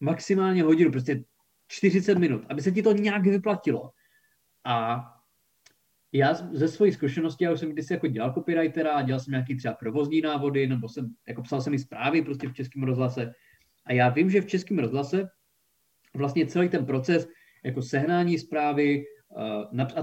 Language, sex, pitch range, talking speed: Czech, male, 130-175 Hz, 165 wpm